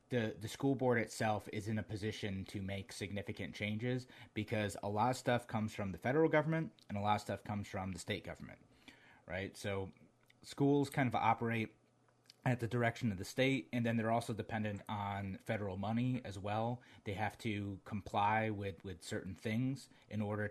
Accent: American